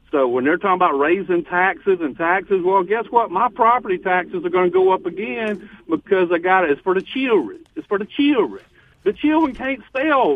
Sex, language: male, English